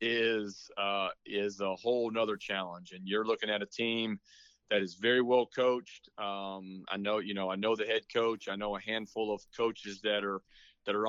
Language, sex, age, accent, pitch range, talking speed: English, male, 30-49, American, 100-115 Hz, 205 wpm